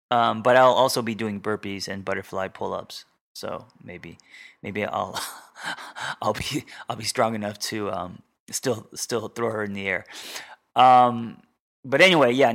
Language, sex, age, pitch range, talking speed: English, male, 20-39, 105-120 Hz, 160 wpm